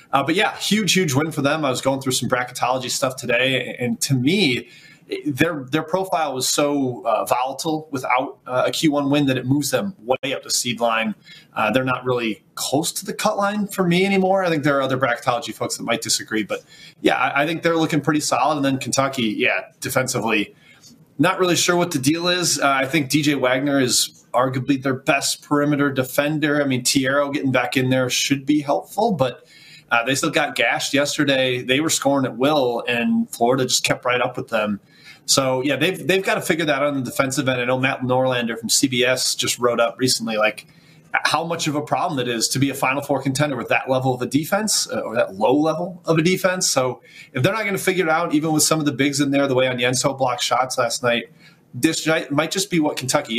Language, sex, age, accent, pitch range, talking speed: English, male, 30-49, American, 130-160 Hz, 235 wpm